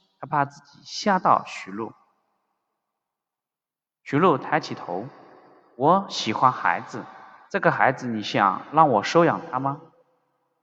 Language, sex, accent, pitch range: Chinese, male, native, 120-160 Hz